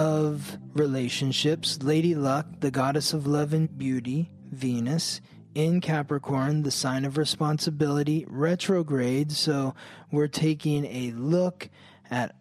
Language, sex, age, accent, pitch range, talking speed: English, male, 20-39, American, 135-175 Hz, 115 wpm